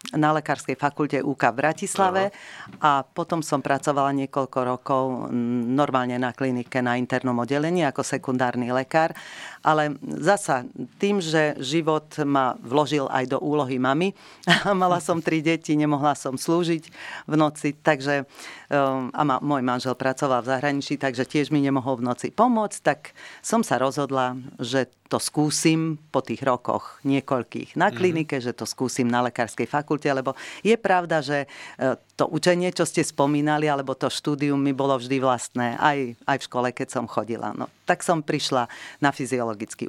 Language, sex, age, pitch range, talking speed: Slovak, female, 40-59, 130-155 Hz, 160 wpm